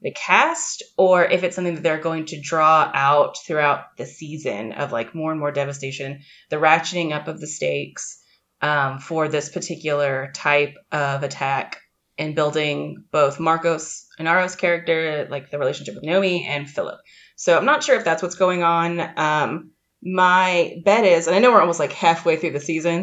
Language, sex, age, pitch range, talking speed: English, female, 20-39, 145-170 Hz, 185 wpm